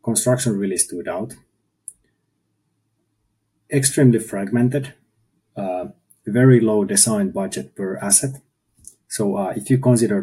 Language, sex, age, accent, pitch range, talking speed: English, male, 30-49, Finnish, 90-115 Hz, 105 wpm